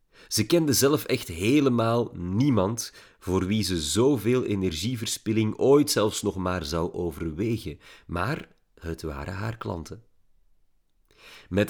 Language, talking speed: Dutch, 120 wpm